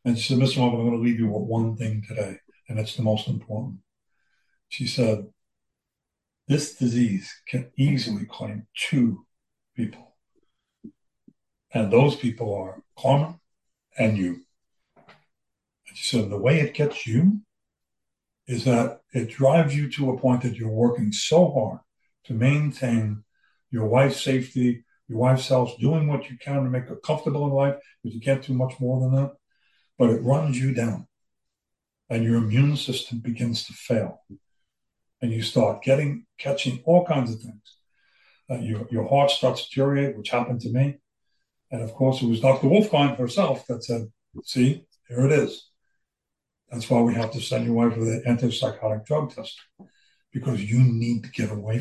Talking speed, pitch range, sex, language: 170 wpm, 115-135 Hz, male, English